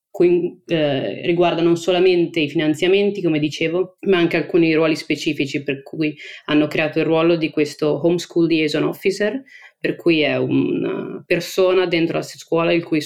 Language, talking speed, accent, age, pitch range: Italian, 155 wpm, native, 20-39, 145-170 Hz